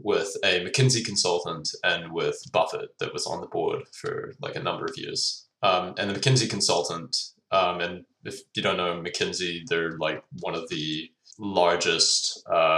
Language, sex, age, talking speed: English, male, 20-39, 170 wpm